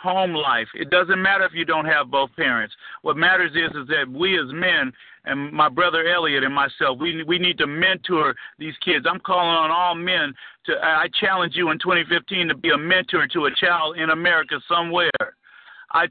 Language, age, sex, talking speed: English, 50-69, male, 200 wpm